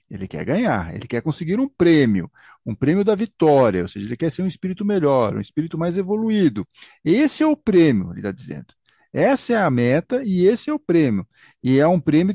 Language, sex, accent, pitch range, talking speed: Portuguese, male, Brazilian, 120-195 Hz, 215 wpm